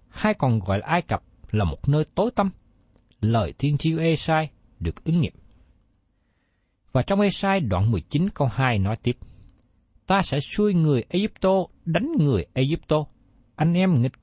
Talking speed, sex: 160 wpm, male